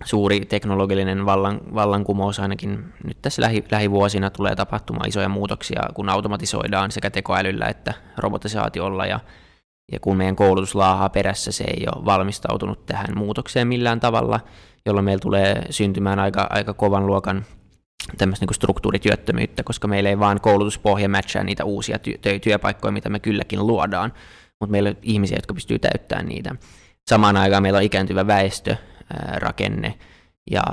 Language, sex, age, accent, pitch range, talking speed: Finnish, male, 20-39, native, 95-105 Hz, 135 wpm